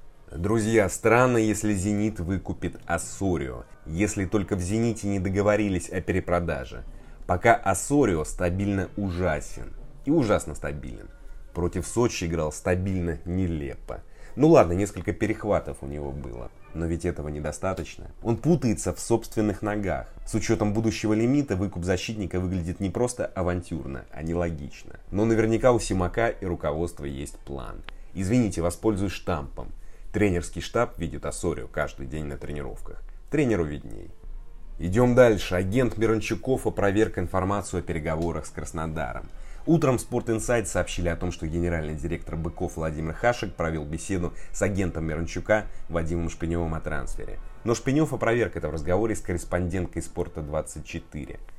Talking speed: 135 wpm